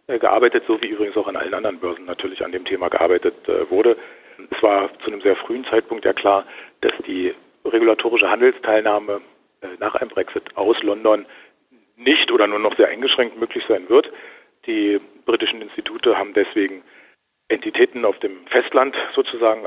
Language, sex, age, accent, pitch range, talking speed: German, male, 40-59, German, 345-420 Hz, 155 wpm